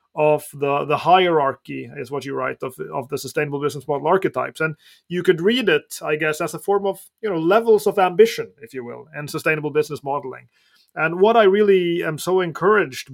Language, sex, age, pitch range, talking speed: English, male, 30-49, 145-175 Hz, 205 wpm